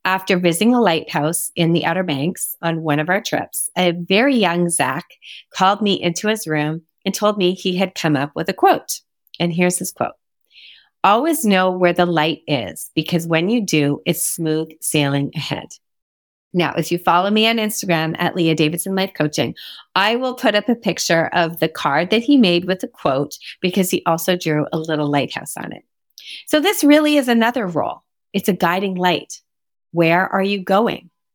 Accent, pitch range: American, 160-195 Hz